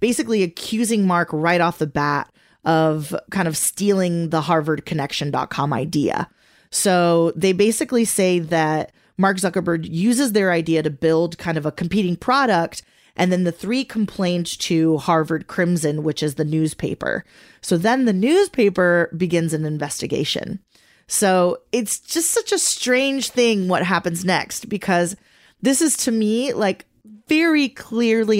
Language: English